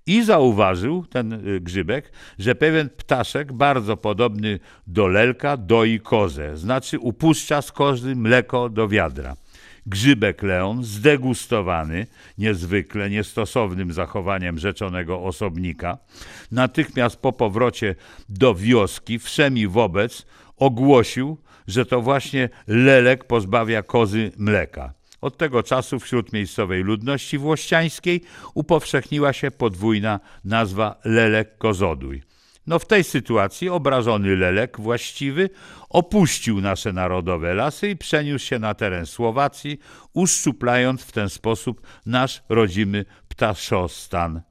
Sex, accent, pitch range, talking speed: male, native, 95-135 Hz, 110 wpm